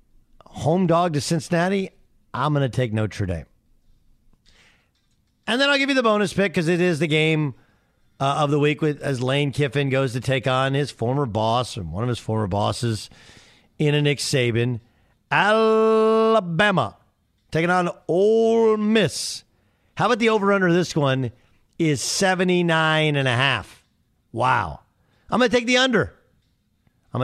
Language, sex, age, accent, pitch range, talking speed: English, male, 50-69, American, 110-165 Hz, 160 wpm